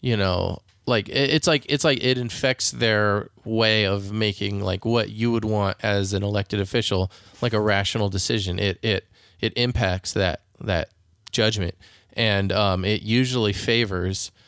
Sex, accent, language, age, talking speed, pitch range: male, American, English, 20-39, 160 wpm, 95-110 Hz